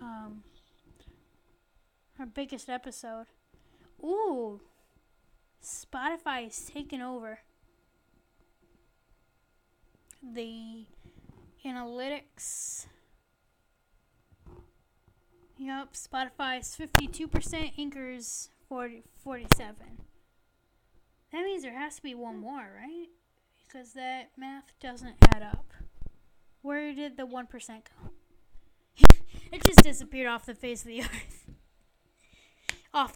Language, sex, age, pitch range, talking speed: English, female, 10-29, 240-295 Hz, 85 wpm